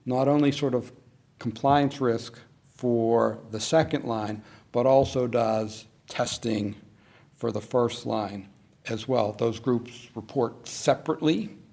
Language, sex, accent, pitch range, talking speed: English, male, American, 115-130 Hz, 125 wpm